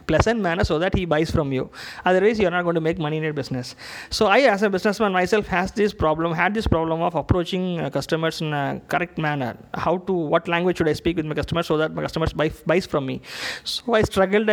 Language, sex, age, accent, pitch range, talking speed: Tamil, male, 20-39, native, 155-205 Hz, 250 wpm